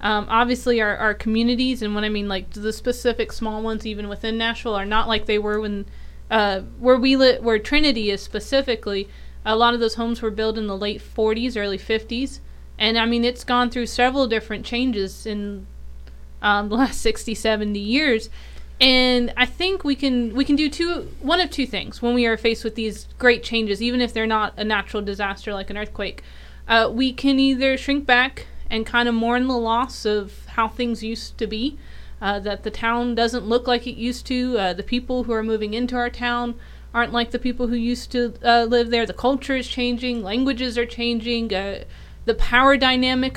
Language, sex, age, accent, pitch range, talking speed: English, female, 20-39, American, 215-255 Hz, 205 wpm